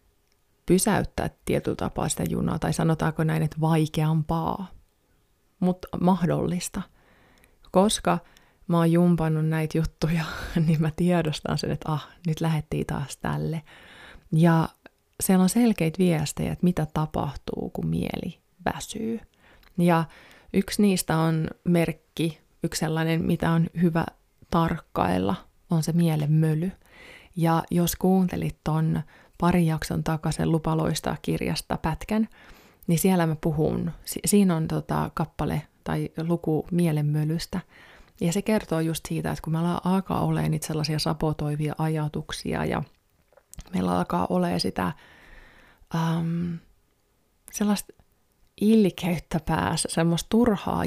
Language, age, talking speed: Finnish, 20-39, 120 wpm